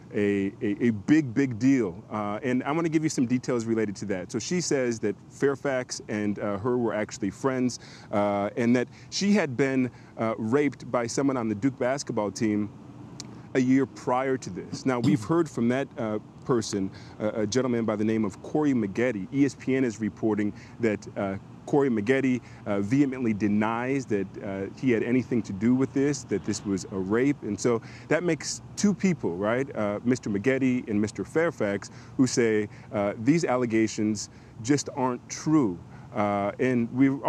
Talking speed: 180 wpm